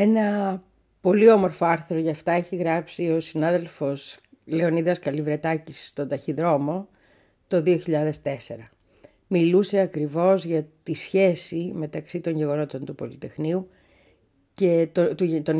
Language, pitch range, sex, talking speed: Greek, 150-190 Hz, female, 110 wpm